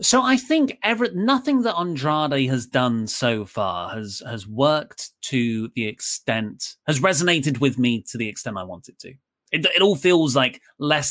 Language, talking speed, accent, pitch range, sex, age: English, 185 wpm, British, 135-220 Hz, male, 30-49